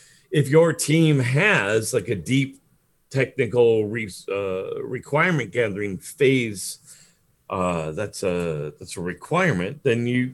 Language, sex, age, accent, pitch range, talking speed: English, male, 40-59, American, 110-150 Hz, 120 wpm